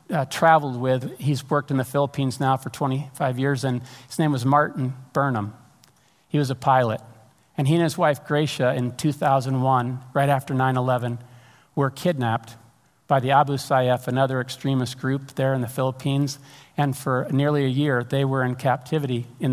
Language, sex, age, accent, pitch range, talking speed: English, male, 50-69, American, 125-140 Hz, 170 wpm